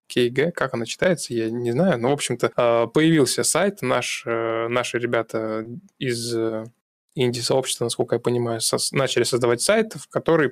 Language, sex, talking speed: Russian, male, 145 wpm